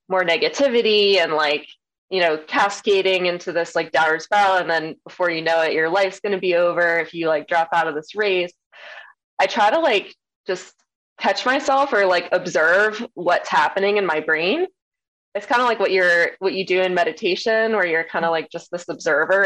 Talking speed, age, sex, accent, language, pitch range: 205 wpm, 20-39, female, American, English, 160-195 Hz